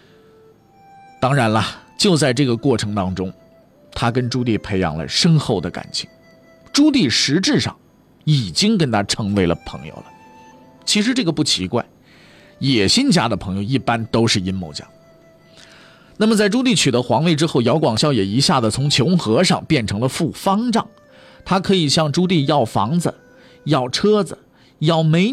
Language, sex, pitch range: Chinese, male, 115-185 Hz